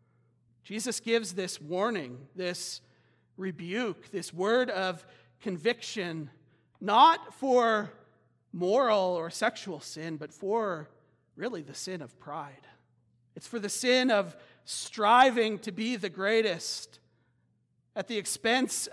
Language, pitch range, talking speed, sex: English, 175-245 Hz, 115 wpm, male